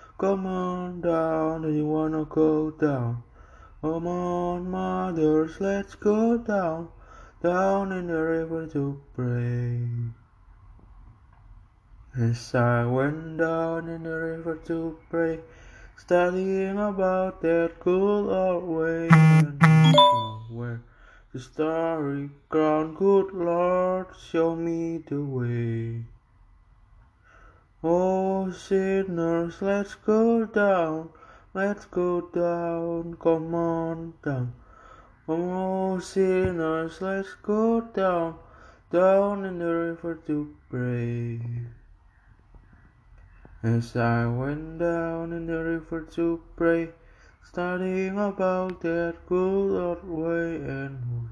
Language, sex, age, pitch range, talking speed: Indonesian, male, 20-39, 130-180 Hz, 100 wpm